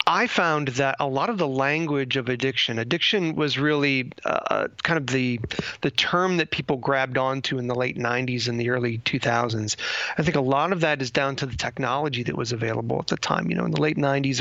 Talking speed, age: 215 wpm, 30-49